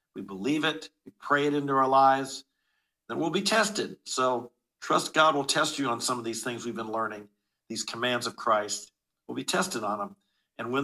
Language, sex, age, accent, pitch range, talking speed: English, male, 50-69, American, 125-155 Hz, 210 wpm